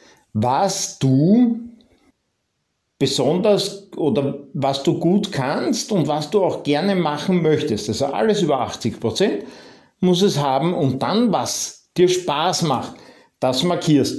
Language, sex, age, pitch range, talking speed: German, male, 50-69, 130-190 Hz, 125 wpm